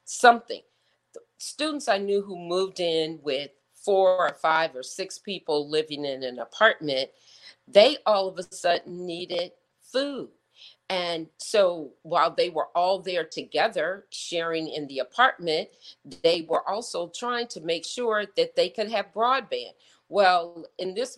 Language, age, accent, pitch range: English, 40-59, American, 160-220 Hz